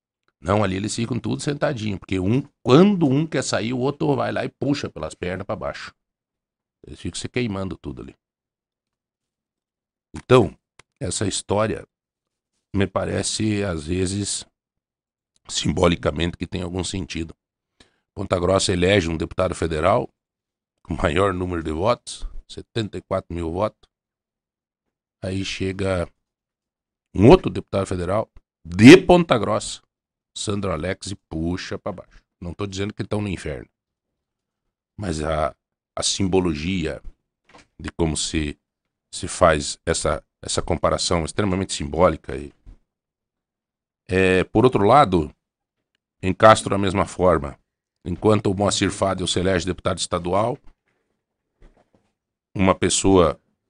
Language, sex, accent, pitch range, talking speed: Portuguese, male, Brazilian, 85-105 Hz, 120 wpm